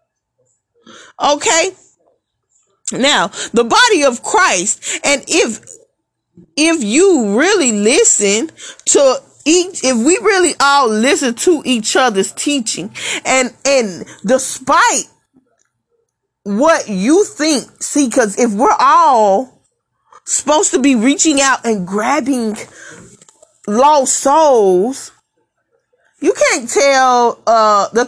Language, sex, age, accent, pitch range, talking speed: English, female, 30-49, American, 235-340 Hz, 105 wpm